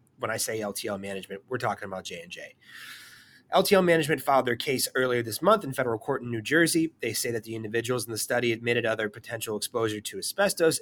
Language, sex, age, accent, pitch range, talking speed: English, male, 30-49, American, 110-140 Hz, 205 wpm